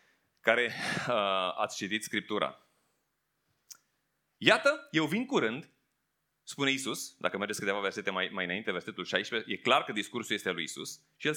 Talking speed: 155 wpm